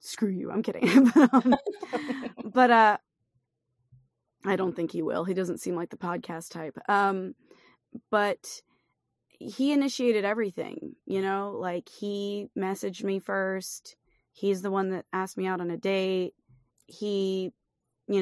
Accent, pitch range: American, 185-235 Hz